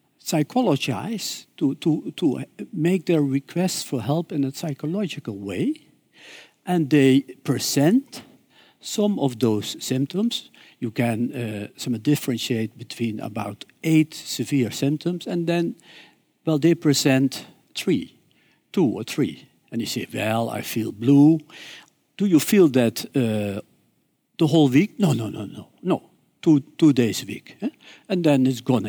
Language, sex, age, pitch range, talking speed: Dutch, male, 60-79, 120-165 Hz, 145 wpm